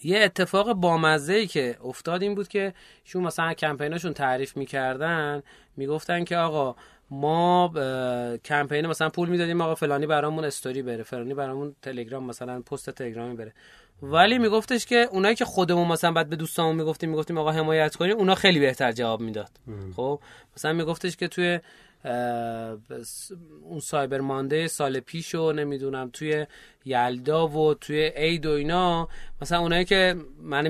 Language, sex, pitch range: Persian, male, 135-170 Hz